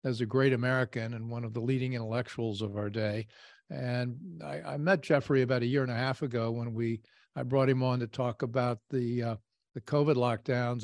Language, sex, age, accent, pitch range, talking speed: English, male, 50-69, American, 115-135 Hz, 215 wpm